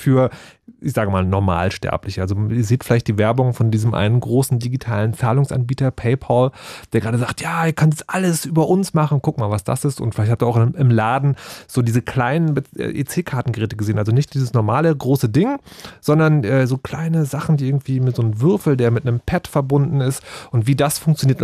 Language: German